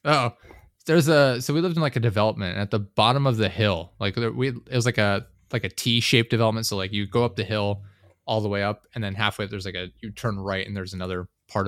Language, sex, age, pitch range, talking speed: English, male, 20-39, 95-115 Hz, 265 wpm